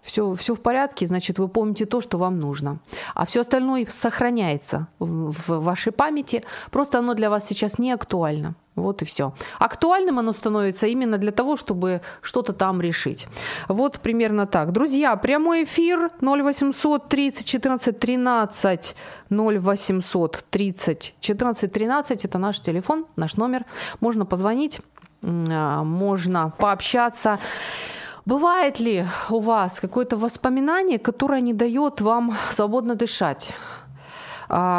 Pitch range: 185-250 Hz